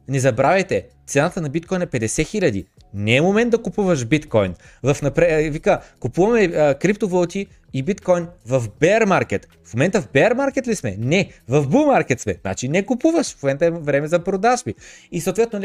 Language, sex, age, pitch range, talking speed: Bulgarian, male, 30-49, 145-180 Hz, 165 wpm